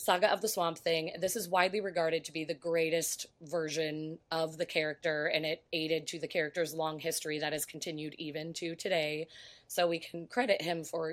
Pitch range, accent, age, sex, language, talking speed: 160-195 Hz, American, 20-39, female, English, 200 wpm